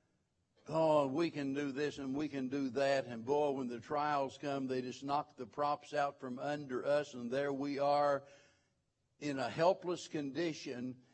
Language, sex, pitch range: English, male, 140-180 Hz